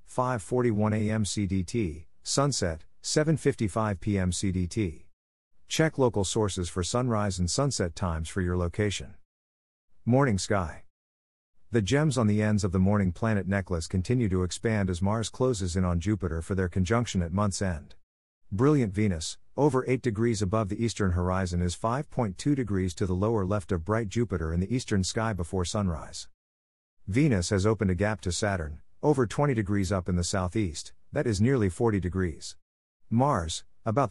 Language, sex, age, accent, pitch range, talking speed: English, male, 50-69, American, 90-115 Hz, 160 wpm